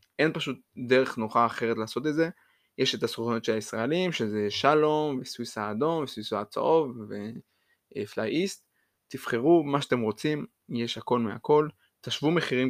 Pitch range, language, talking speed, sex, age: 110-140 Hz, Hebrew, 140 wpm, male, 20-39